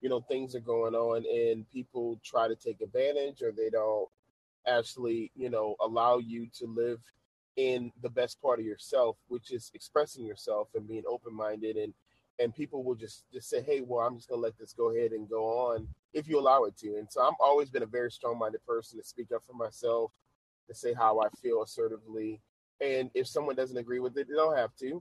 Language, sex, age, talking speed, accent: English, male, 30-49, 225 wpm, American